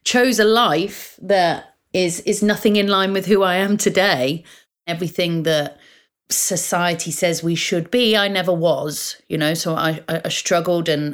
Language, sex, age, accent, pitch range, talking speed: English, female, 30-49, British, 160-220 Hz, 165 wpm